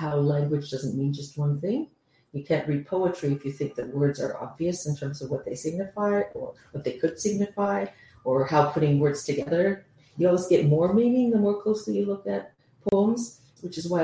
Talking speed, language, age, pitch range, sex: 210 wpm, English, 40-59, 145-195 Hz, female